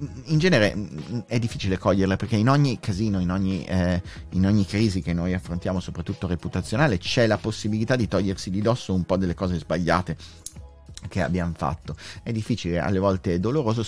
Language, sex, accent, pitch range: Italian, male, native, 90-120 Hz